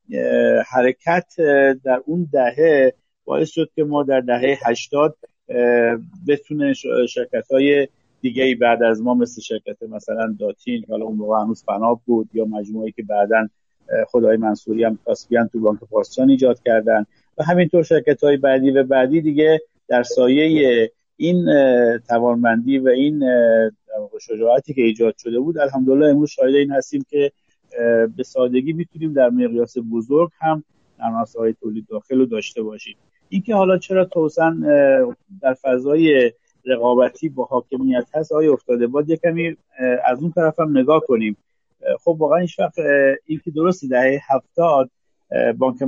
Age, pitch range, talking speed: 50-69, 115-155 Hz, 145 wpm